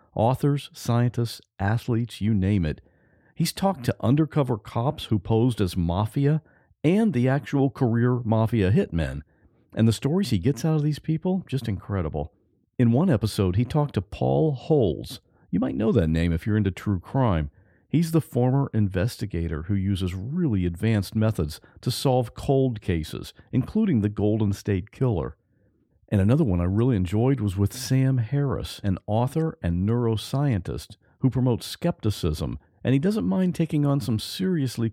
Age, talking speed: 50-69, 160 wpm